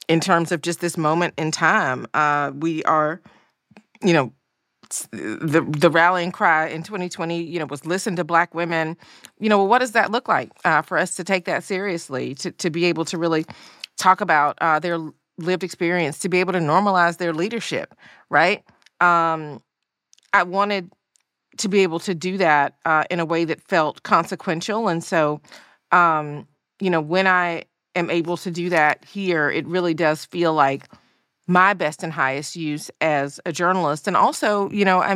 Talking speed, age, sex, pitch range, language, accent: 185 wpm, 40-59, female, 160-185 Hz, English, American